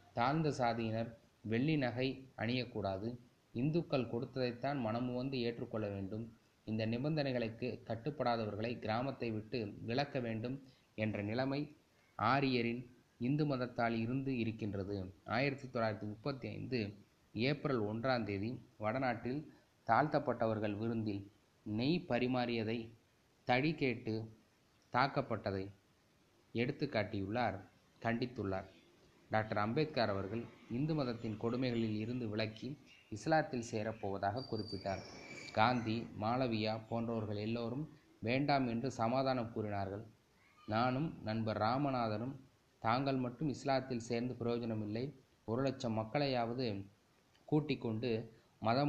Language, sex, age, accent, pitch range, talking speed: Tamil, male, 20-39, native, 110-130 Hz, 85 wpm